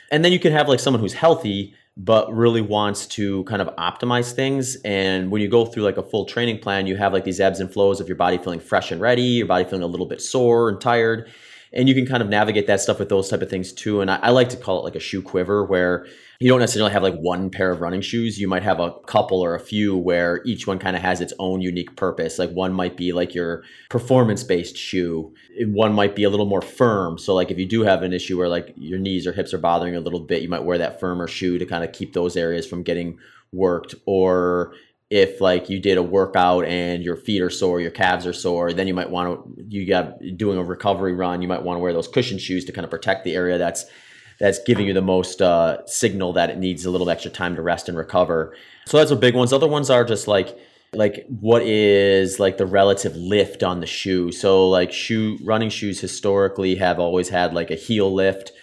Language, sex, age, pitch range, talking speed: English, male, 30-49, 90-105 Hz, 255 wpm